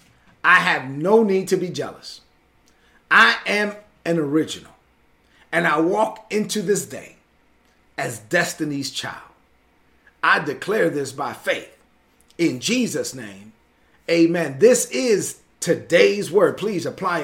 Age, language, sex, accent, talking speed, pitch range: 40-59, English, male, American, 120 wpm, 135-175 Hz